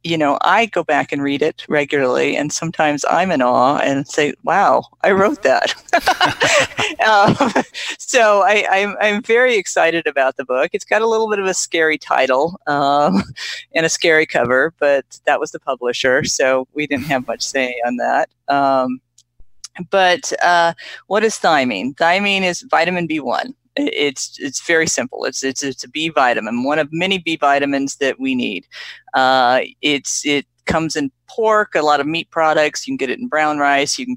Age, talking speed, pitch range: 40-59, 185 wpm, 135-170 Hz